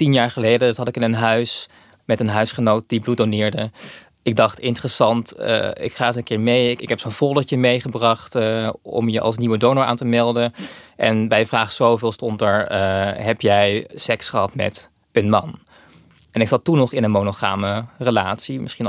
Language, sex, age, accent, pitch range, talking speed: Dutch, male, 20-39, Dutch, 110-130 Hz, 195 wpm